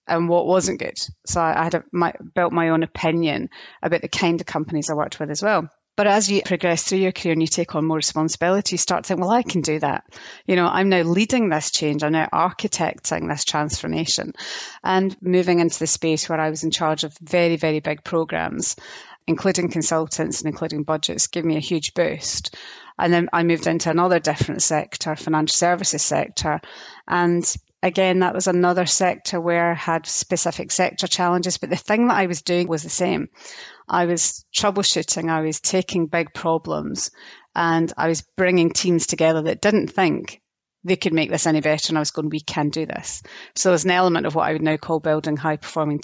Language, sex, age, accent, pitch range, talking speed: English, female, 30-49, British, 155-180 Hz, 205 wpm